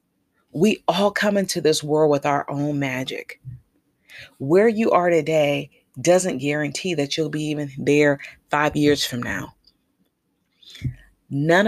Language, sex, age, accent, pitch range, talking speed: English, female, 30-49, American, 140-165 Hz, 135 wpm